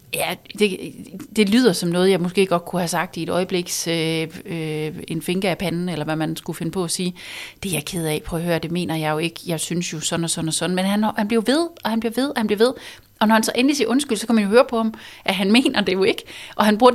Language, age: Danish, 30-49